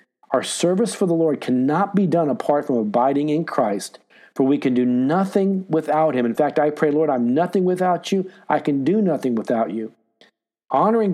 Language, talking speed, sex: English, 195 wpm, male